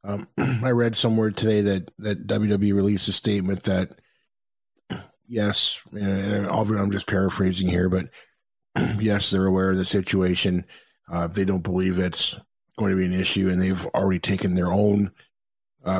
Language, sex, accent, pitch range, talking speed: English, male, American, 90-105 Hz, 160 wpm